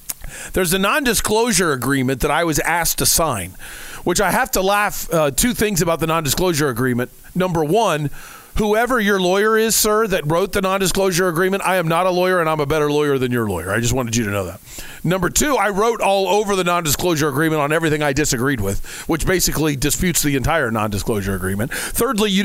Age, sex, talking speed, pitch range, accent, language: 40-59, male, 205 wpm, 140-195 Hz, American, English